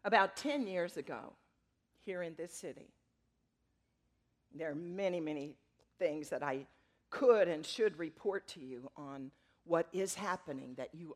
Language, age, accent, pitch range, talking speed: English, 50-69, American, 145-190 Hz, 145 wpm